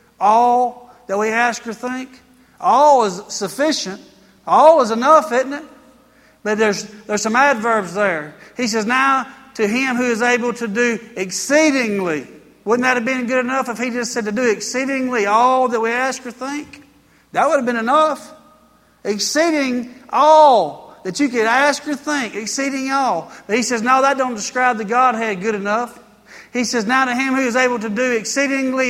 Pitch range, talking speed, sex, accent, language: 220-265 Hz, 180 wpm, male, American, English